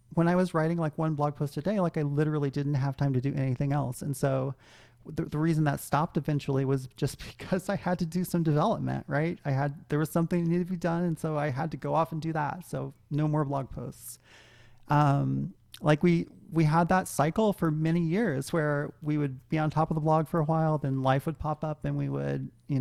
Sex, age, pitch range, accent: male, 30-49, 135-165 Hz, American